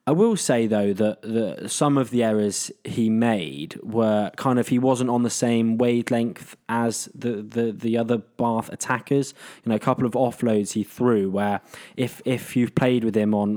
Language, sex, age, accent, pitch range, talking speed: English, male, 20-39, British, 105-120 Hz, 195 wpm